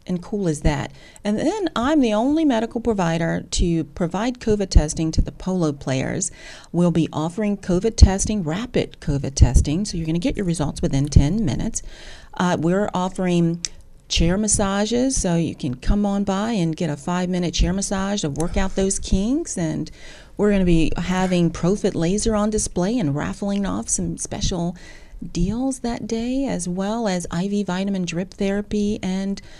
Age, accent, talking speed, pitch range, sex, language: 40-59, American, 175 wpm, 165-210 Hz, female, Spanish